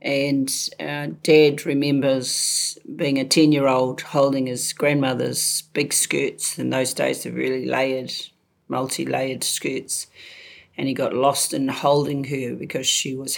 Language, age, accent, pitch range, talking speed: English, 40-59, Australian, 130-150 Hz, 135 wpm